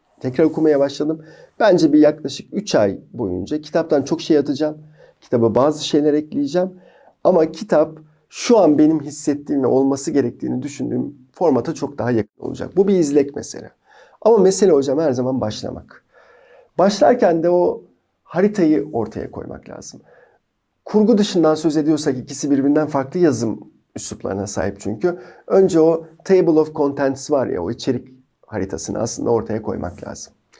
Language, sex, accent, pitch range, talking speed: Turkish, male, native, 120-160 Hz, 145 wpm